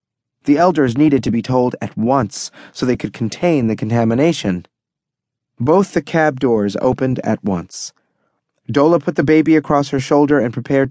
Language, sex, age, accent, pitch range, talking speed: English, male, 30-49, American, 115-160 Hz, 165 wpm